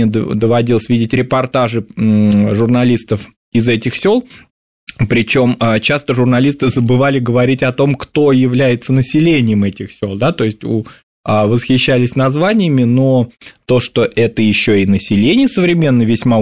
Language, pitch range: Russian, 105-135 Hz